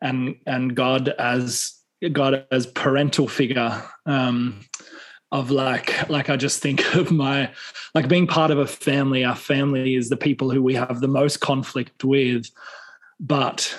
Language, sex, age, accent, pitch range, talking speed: English, male, 20-39, Australian, 125-145 Hz, 155 wpm